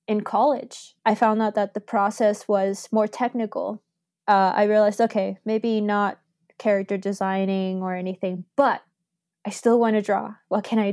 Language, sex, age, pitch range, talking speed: English, female, 20-39, 200-230 Hz, 165 wpm